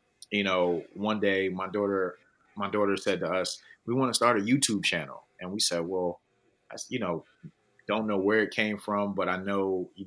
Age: 30-49